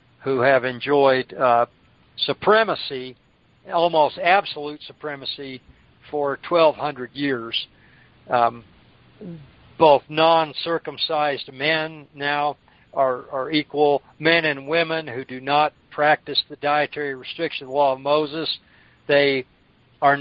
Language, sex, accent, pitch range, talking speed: English, male, American, 130-150 Hz, 100 wpm